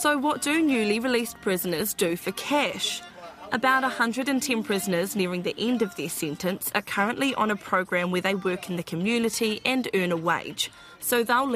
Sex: female